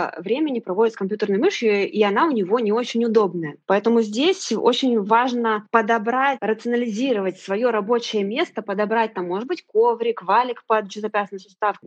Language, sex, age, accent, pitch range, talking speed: Russian, female, 20-39, native, 195-255 Hz, 145 wpm